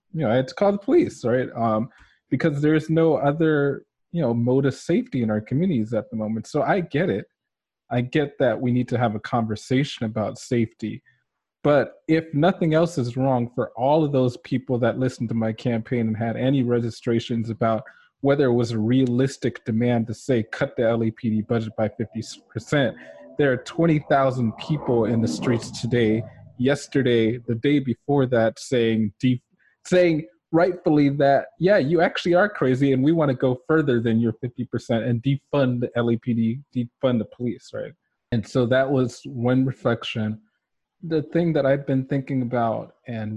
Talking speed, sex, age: 180 wpm, male, 20-39